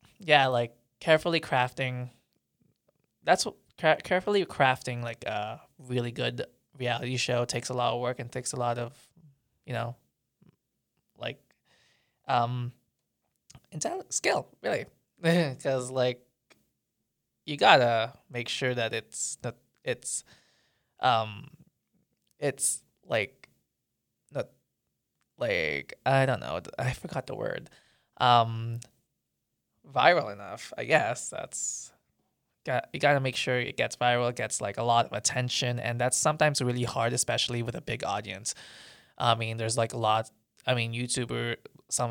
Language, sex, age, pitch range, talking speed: English, male, 20-39, 115-130 Hz, 130 wpm